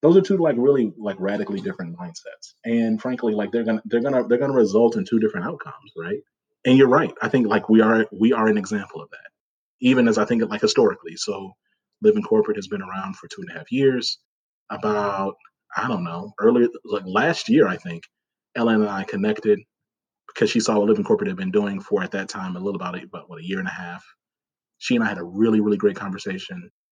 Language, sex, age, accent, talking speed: English, male, 30-49, American, 230 wpm